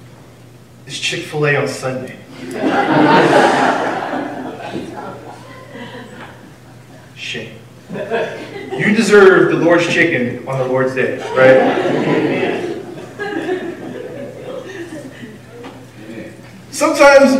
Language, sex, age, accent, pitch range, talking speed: English, male, 20-39, American, 165-245 Hz, 55 wpm